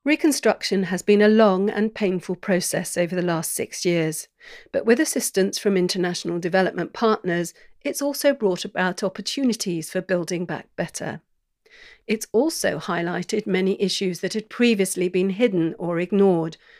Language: English